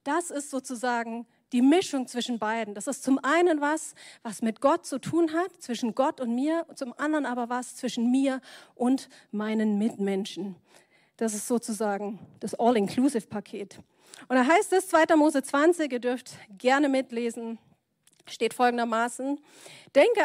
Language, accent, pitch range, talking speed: German, German, 220-285 Hz, 150 wpm